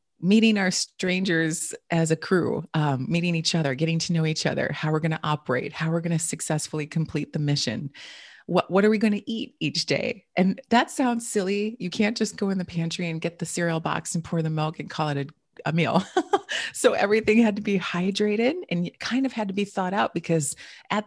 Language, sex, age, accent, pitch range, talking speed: English, female, 30-49, American, 160-215 Hz, 225 wpm